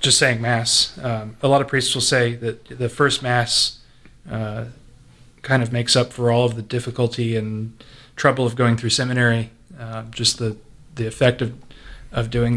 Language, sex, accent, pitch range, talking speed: English, male, American, 115-130 Hz, 180 wpm